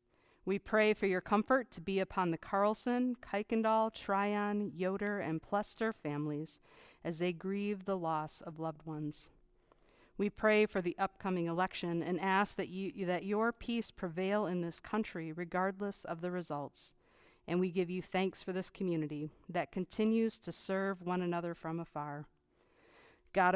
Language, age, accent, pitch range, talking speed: English, 50-69, American, 165-205 Hz, 155 wpm